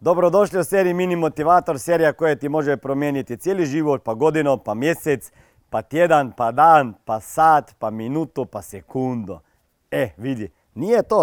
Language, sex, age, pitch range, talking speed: Croatian, male, 40-59, 140-205 Hz, 155 wpm